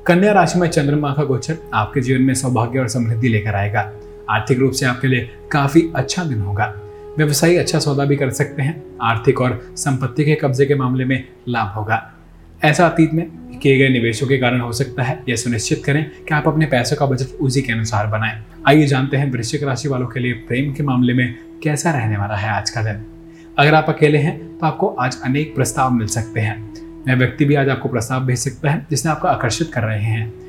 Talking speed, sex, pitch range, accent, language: 145 wpm, male, 115-150 Hz, native, Hindi